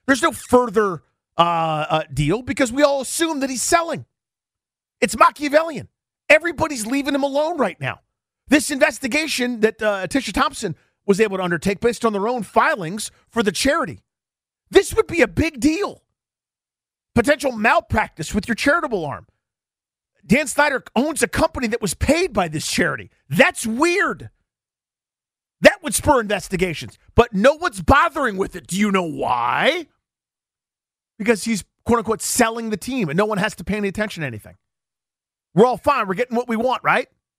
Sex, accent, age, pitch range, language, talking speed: male, American, 40-59, 165-260 Hz, English, 165 wpm